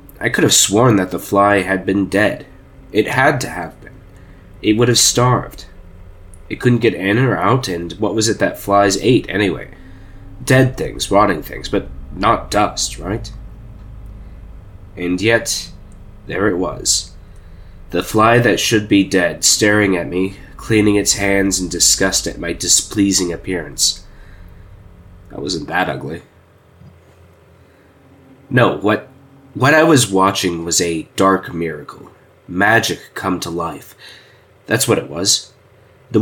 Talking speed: 145 wpm